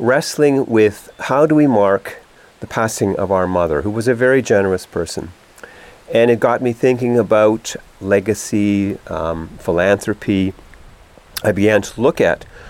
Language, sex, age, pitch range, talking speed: English, male, 40-59, 95-115 Hz, 145 wpm